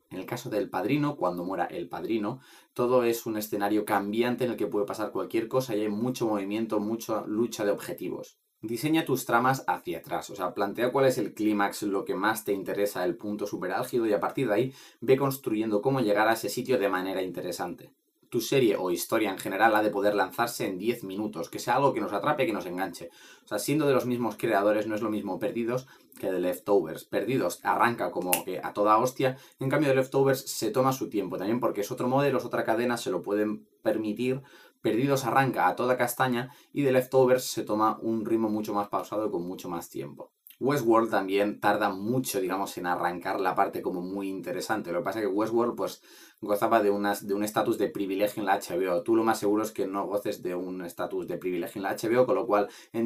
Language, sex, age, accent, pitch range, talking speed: Spanish, male, 20-39, Spanish, 100-125 Hz, 225 wpm